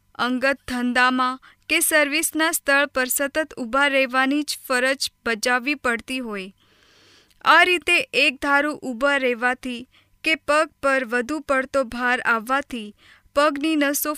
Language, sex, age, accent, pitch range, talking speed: Gujarati, female, 20-39, native, 245-300 Hz, 85 wpm